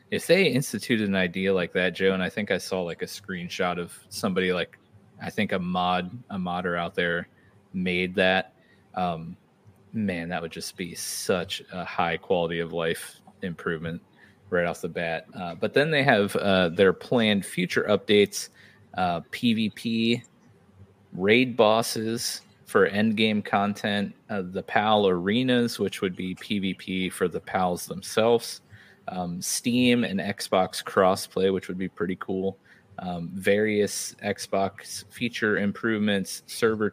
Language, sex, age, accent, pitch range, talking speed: English, male, 30-49, American, 90-105 Hz, 150 wpm